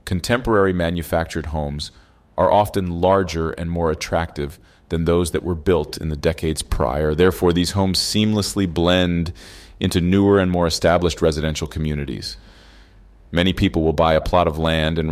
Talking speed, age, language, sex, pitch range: 155 wpm, 30-49, English, male, 80-95 Hz